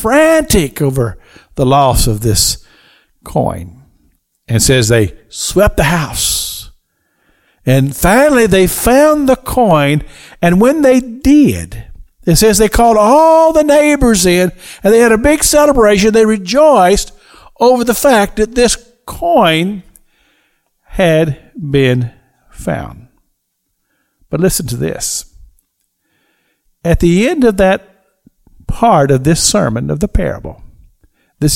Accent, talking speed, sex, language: American, 125 wpm, male, English